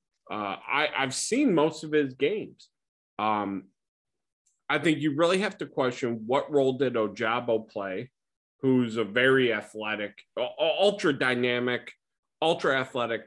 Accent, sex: American, male